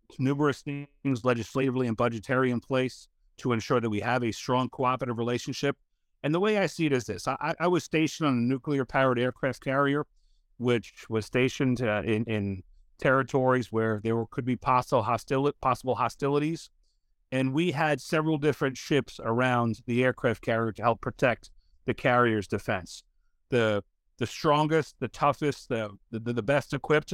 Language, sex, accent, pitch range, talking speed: English, male, American, 115-140 Hz, 165 wpm